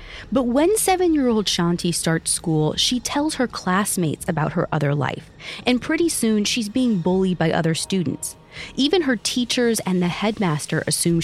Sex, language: female, English